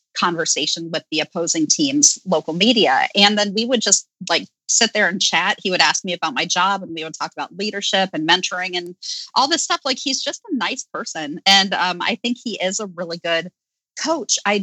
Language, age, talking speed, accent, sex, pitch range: English, 30-49, 220 wpm, American, female, 165-215 Hz